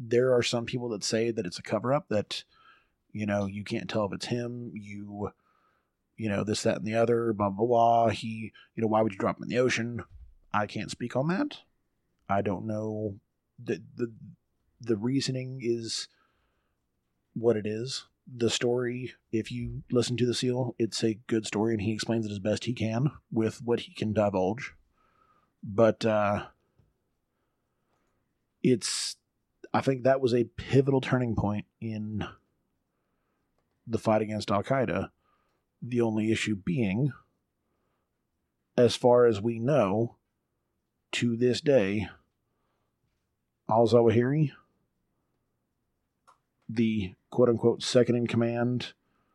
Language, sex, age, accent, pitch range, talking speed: English, male, 30-49, American, 105-120 Hz, 145 wpm